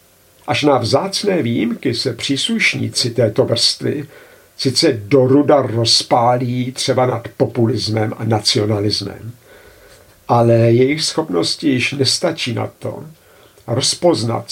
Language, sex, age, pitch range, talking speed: Czech, male, 50-69, 110-140 Hz, 100 wpm